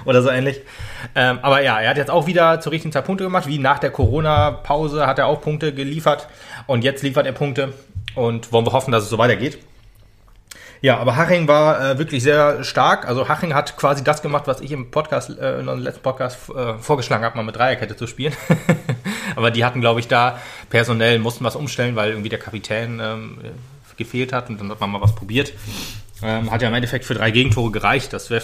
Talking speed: 205 wpm